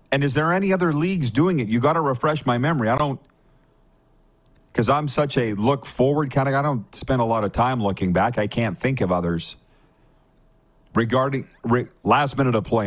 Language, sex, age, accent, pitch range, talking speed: English, male, 40-59, American, 110-145 Hz, 205 wpm